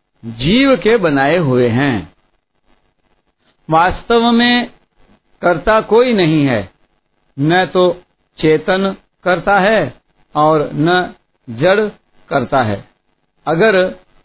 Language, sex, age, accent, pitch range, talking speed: Hindi, male, 60-79, native, 130-190 Hz, 95 wpm